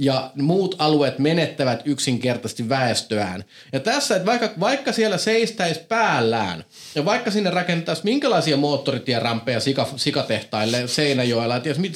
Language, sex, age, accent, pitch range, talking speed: Finnish, male, 30-49, native, 150-215 Hz, 120 wpm